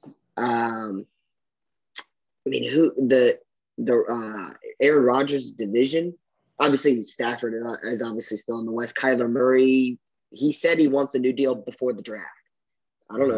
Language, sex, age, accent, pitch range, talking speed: English, male, 20-39, American, 115-135 Hz, 150 wpm